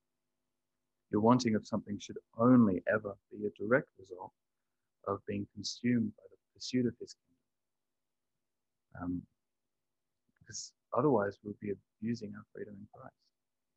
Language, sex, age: English, male, 30-49